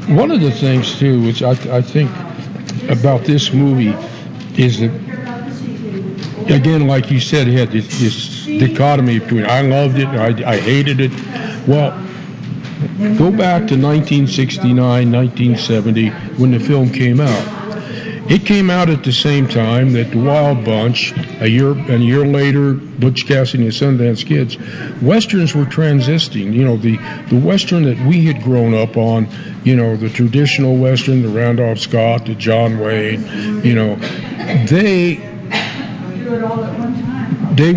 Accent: American